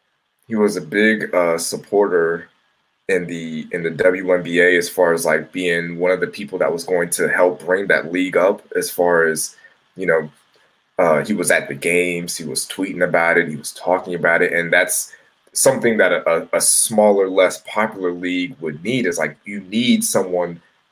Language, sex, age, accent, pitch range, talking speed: English, male, 20-39, American, 85-105 Hz, 190 wpm